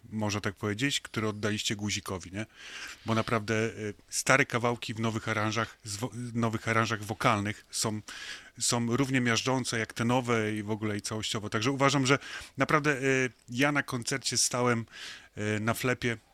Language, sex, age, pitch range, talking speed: Polish, male, 30-49, 110-130 Hz, 140 wpm